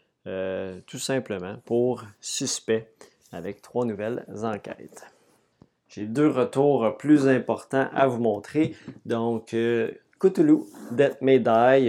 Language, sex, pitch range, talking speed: French, male, 105-125 Hz, 110 wpm